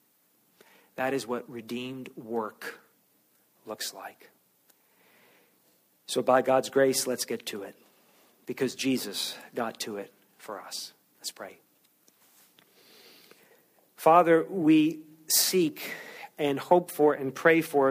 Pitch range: 130-150 Hz